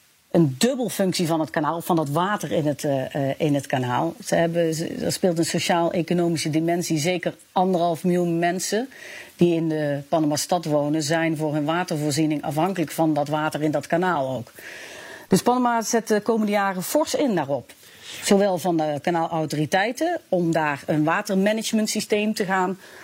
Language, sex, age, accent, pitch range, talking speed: English, female, 40-59, Dutch, 155-200 Hz, 165 wpm